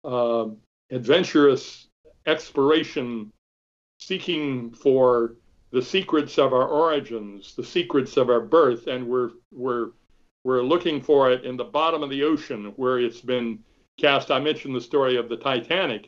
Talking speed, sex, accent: 145 wpm, male, American